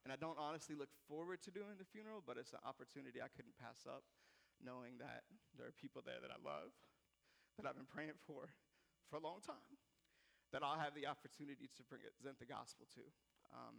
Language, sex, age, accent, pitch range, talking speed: English, male, 30-49, American, 125-155 Hz, 205 wpm